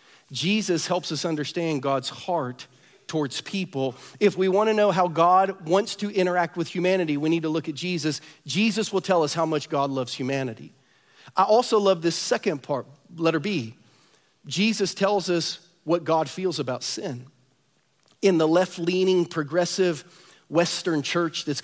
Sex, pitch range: male, 145-185 Hz